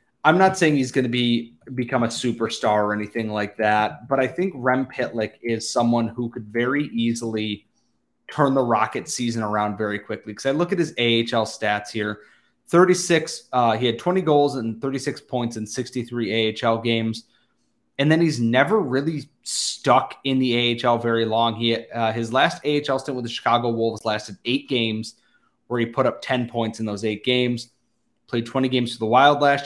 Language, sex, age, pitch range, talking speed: English, male, 20-39, 115-135 Hz, 190 wpm